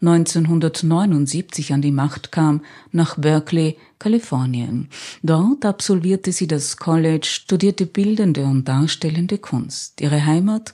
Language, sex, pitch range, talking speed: German, female, 145-175 Hz, 110 wpm